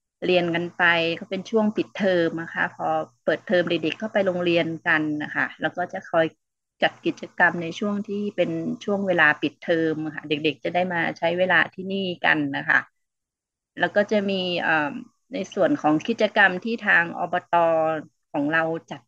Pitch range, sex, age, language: 170-215 Hz, female, 30-49, Thai